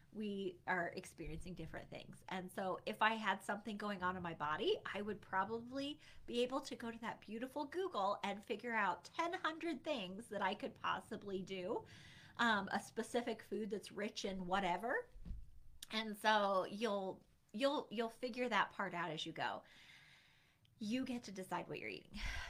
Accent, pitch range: American, 190-260 Hz